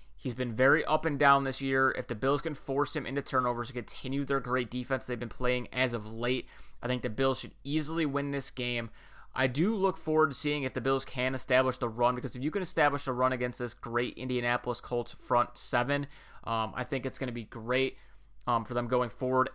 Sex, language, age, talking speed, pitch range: male, English, 30-49, 235 wpm, 120-135 Hz